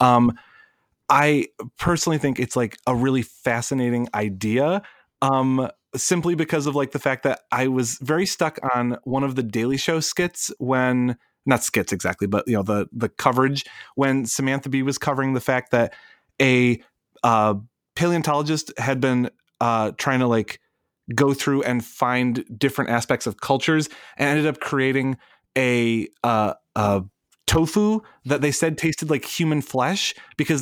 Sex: male